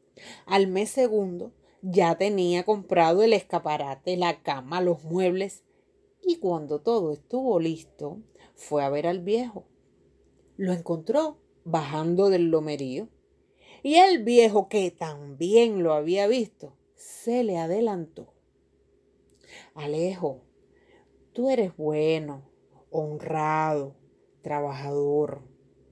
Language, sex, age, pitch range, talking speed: Spanish, female, 30-49, 160-235 Hz, 100 wpm